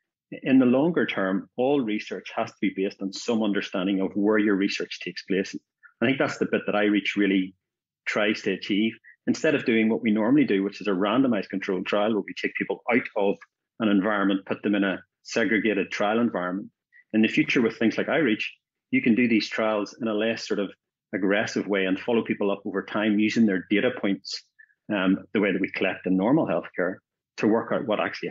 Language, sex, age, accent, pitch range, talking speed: English, male, 30-49, Irish, 100-115 Hz, 215 wpm